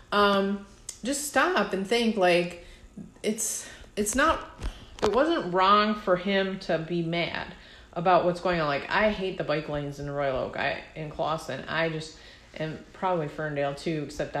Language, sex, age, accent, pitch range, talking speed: English, female, 30-49, American, 155-195 Hz, 165 wpm